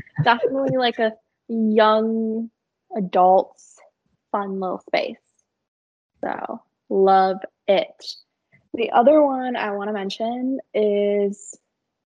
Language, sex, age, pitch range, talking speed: English, female, 20-39, 190-255 Hz, 95 wpm